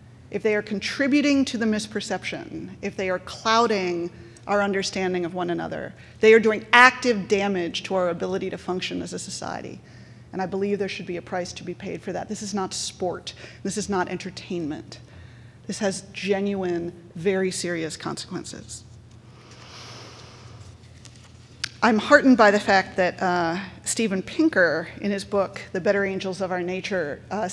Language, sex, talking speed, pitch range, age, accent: English, female, 165 wpm, 165-210 Hz, 30-49, American